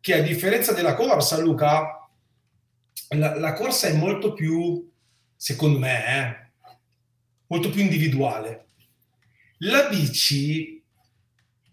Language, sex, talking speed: Italian, male, 100 wpm